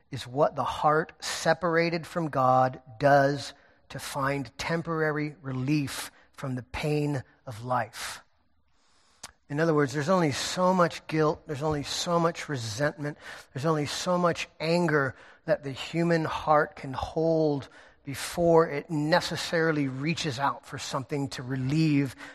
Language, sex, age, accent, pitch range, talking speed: English, male, 40-59, American, 130-155 Hz, 135 wpm